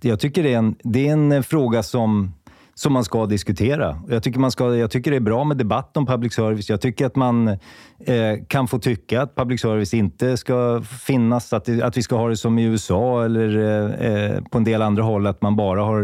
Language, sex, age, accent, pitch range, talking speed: Swedish, male, 30-49, native, 105-125 Hz, 235 wpm